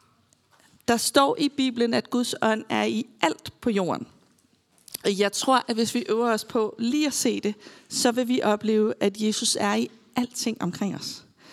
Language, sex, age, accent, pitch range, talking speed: Danish, female, 40-59, native, 210-250 Hz, 185 wpm